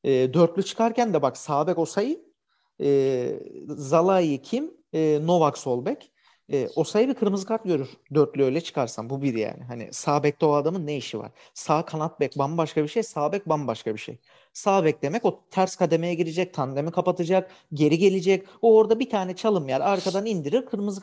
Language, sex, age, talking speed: Turkish, male, 40-59, 175 wpm